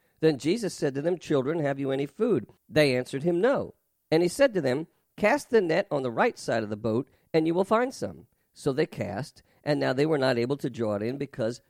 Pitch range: 125-175 Hz